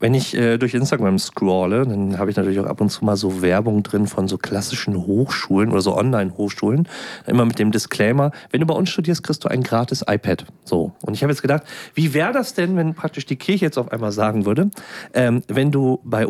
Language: German